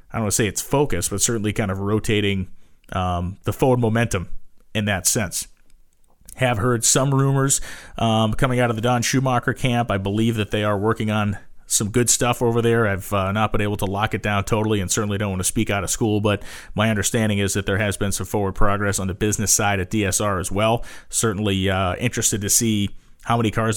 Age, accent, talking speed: 30-49, American, 225 wpm